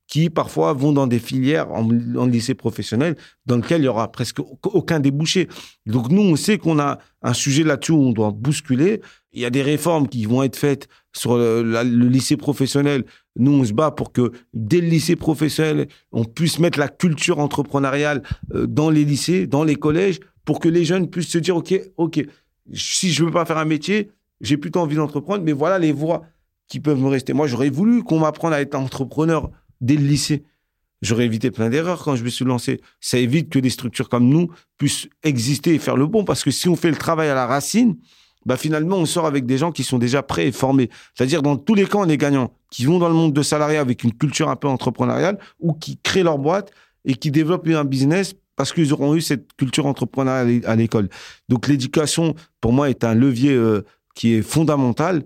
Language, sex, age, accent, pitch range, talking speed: French, male, 40-59, French, 130-160 Hz, 220 wpm